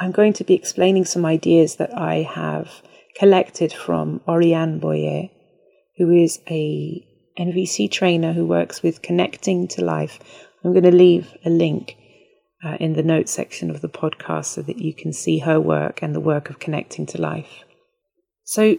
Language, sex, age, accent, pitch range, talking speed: English, female, 30-49, British, 160-200 Hz, 170 wpm